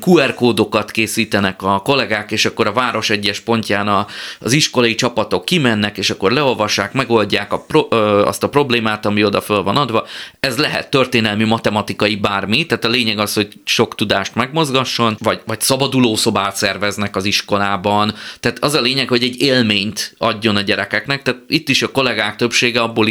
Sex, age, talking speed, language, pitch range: male, 20-39, 165 wpm, Hungarian, 105-125 Hz